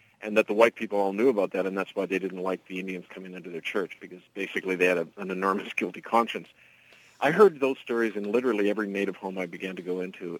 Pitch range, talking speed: 95-110 Hz, 255 wpm